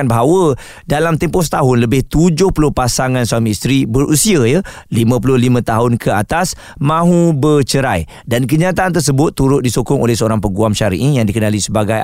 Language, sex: Malay, male